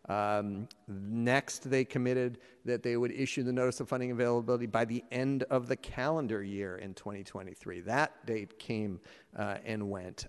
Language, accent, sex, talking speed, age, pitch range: English, American, male, 165 wpm, 50-69, 105-130 Hz